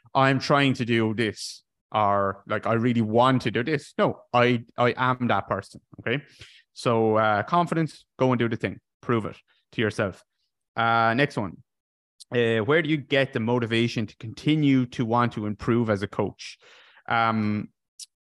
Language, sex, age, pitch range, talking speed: English, male, 20-39, 105-130 Hz, 170 wpm